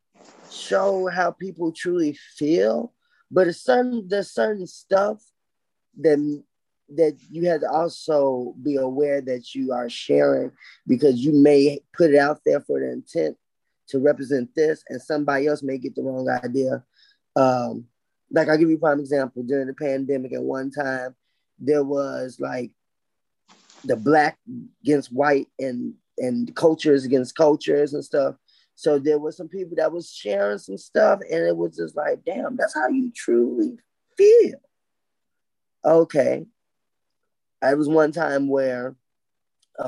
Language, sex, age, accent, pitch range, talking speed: English, male, 20-39, American, 130-165 Hz, 145 wpm